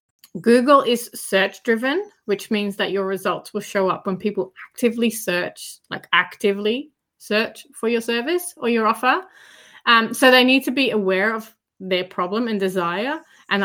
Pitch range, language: 195-235 Hz, English